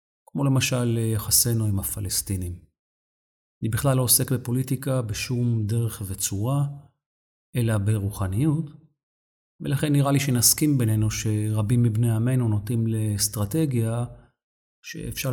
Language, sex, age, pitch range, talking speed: Hebrew, male, 40-59, 105-140 Hz, 100 wpm